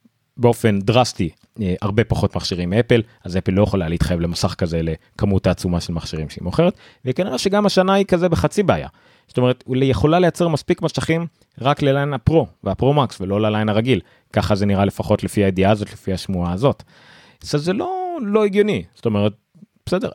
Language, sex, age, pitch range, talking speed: Hebrew, male, 30-49, 95-130 Hz, 175 wpm